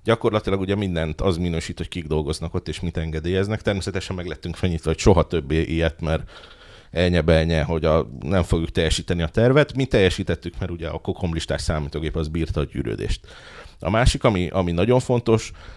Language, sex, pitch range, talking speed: Hungarian, male, 85-110 Hz, 175 wpm